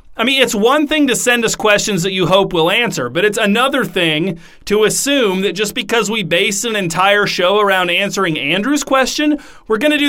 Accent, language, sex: American, English, male